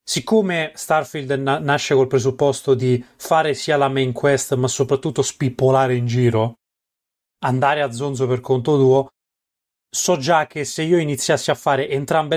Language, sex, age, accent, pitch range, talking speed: Italian, male, 30-49, native, 130-165 Hz, 155 wpm